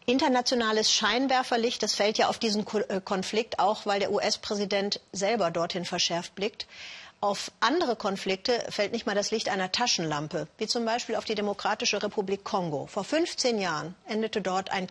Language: German